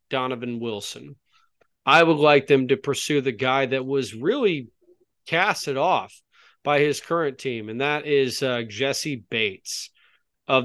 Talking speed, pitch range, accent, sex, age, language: 145 wpm, 135-160 Hz, American, male, 30-49, English